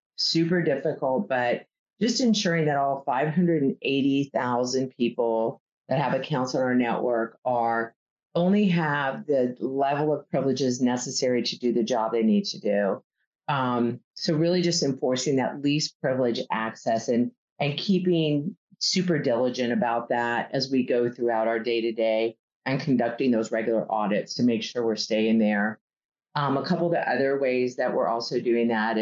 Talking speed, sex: 155 wpm, female